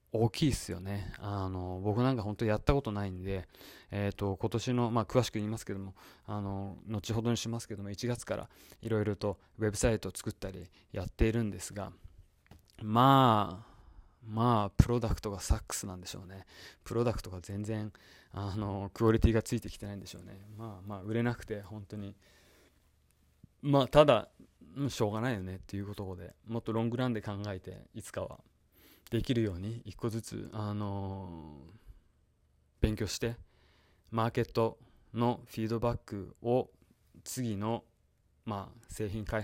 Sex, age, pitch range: male, 20-39, 95-115 Hz